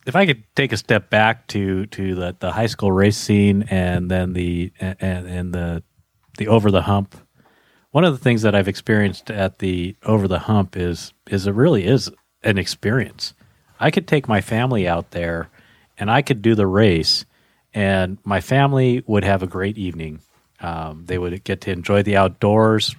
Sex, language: male, English